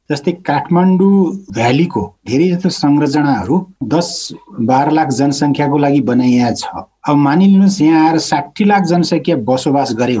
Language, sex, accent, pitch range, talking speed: English, male, Indian, 135-180 Hz, 135 wpm